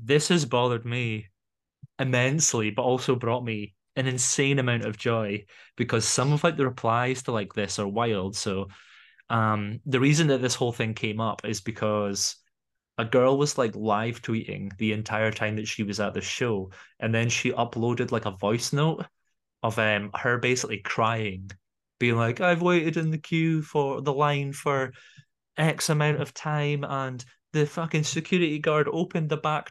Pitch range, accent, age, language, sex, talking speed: 110-155 Hz, British, 20-39, English, male, 180 wpm